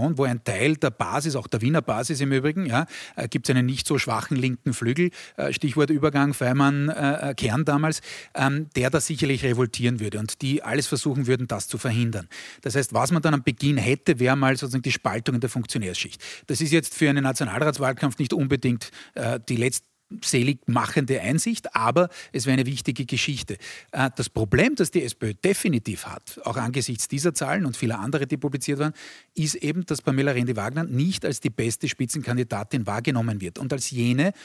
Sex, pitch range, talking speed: male, 125-155 Hz, 185 wpm